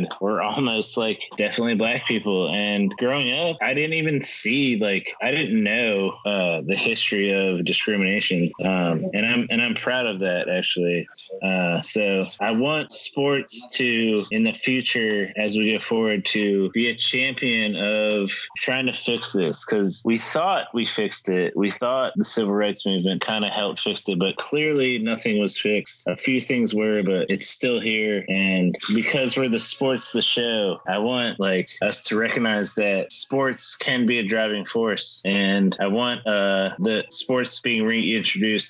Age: 20-39